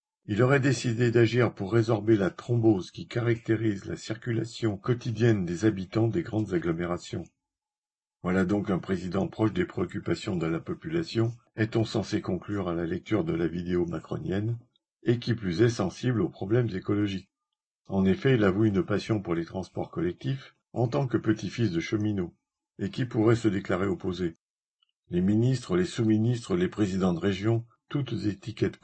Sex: male